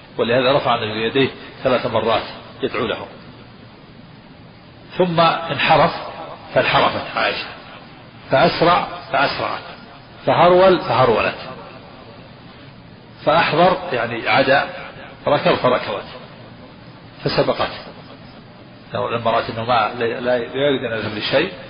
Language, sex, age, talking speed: Arabic, male, 40-59, 85 wpm